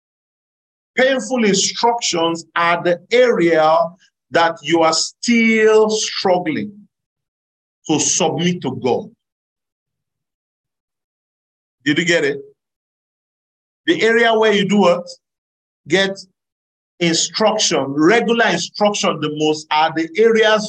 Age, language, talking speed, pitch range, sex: 50-69, English, 95 wpm, 150-205 Hz, male